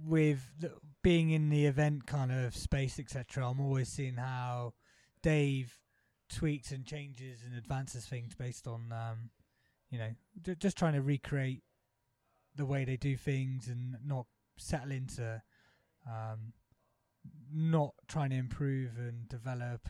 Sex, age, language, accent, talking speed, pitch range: male, 20-39, English, British, 140 wpm, 120-155 Hz